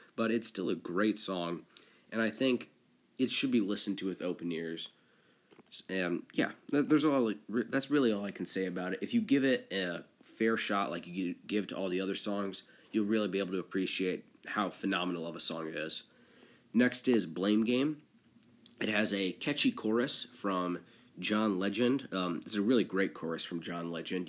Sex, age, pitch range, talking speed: male, 20-39, 90-110 Hz, 190 wpm